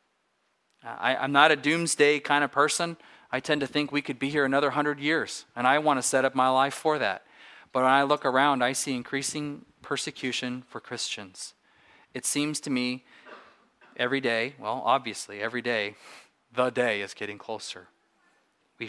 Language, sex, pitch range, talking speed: English, male, 120-145 Hz, 175 wpm